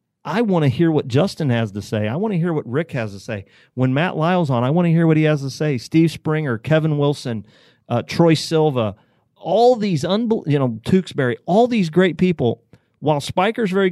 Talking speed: 220 wpm